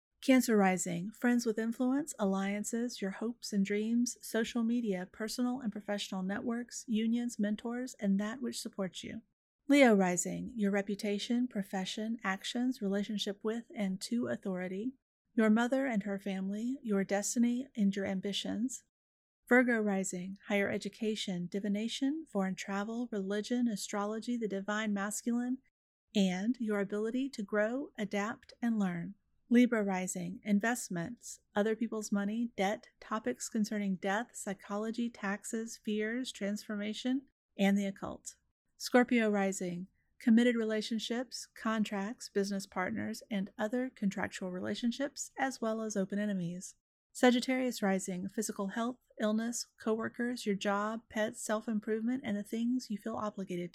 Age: 30-49